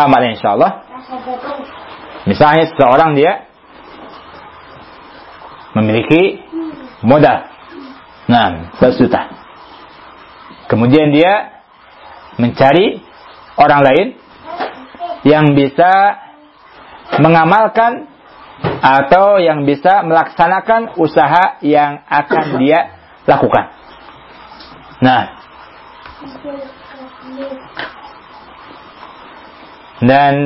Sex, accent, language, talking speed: male, native, Indonesian, 55 wpm